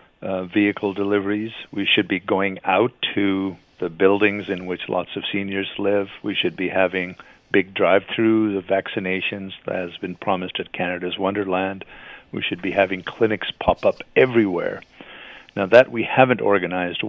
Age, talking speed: 50-69, 160 wpm